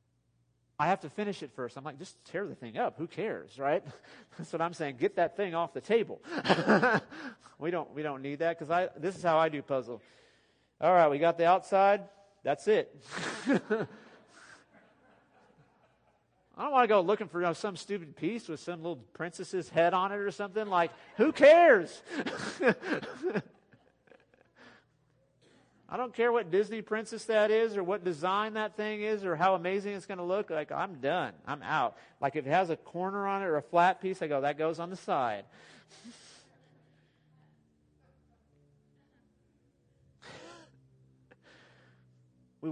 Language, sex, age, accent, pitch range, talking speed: English, male, 40-59, American, 140-195 Hz, 165 wpm